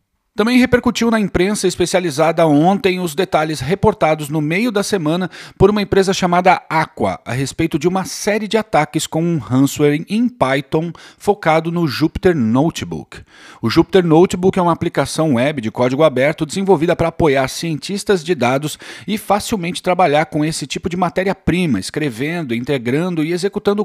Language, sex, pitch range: Portuguese, male, 145-190 Hz